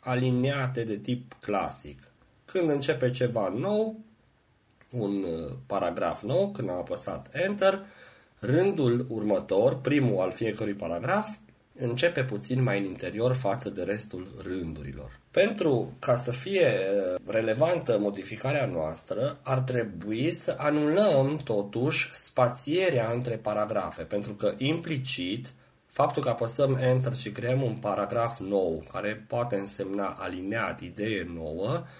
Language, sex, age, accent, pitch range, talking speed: Romanian, male, 30-49, native, 105-140 Hz, 120 wpm